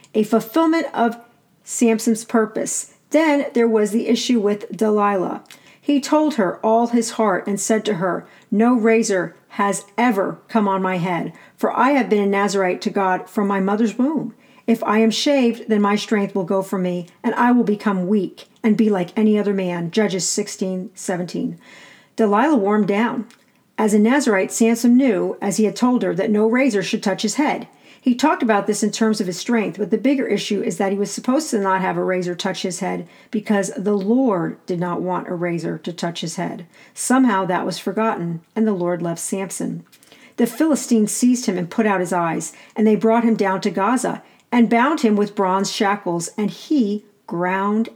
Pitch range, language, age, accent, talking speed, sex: 190-230 Hz, English, 40-59, American, 200 wpm, female